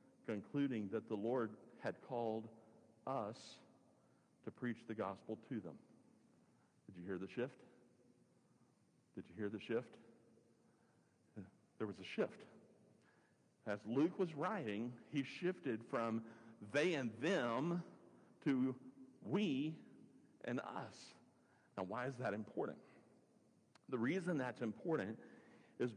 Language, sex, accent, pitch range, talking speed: English, male, American, 110-135 Hz, 120 wpm